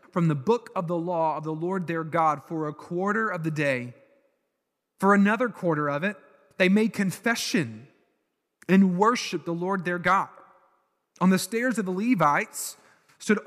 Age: 30-49